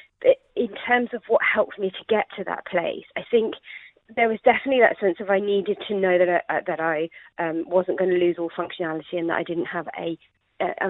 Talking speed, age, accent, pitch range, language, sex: 225 wpm, 30-49, British, 170-220 Hz, English, female